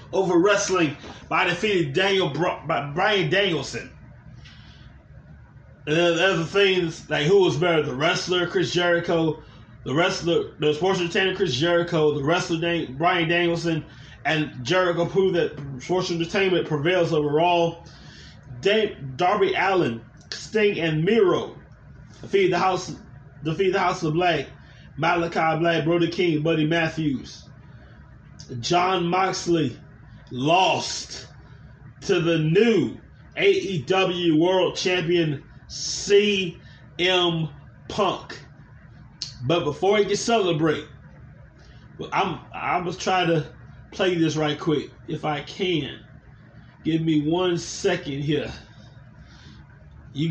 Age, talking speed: 20-39, 115 wpm